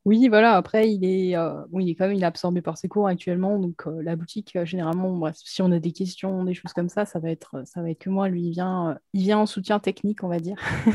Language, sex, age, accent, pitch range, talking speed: French, female, 20-39, French, 180-215 Hz, 290 wpm